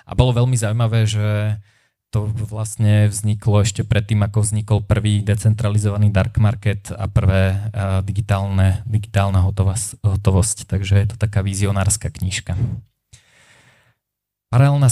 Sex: male